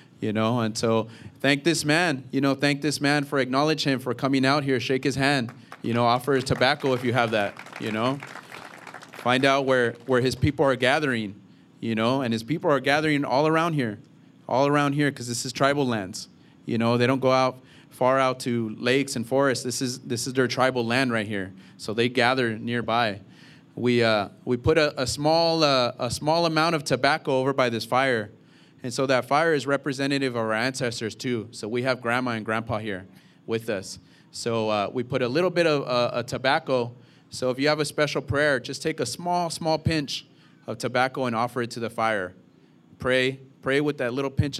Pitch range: 115-140 Hz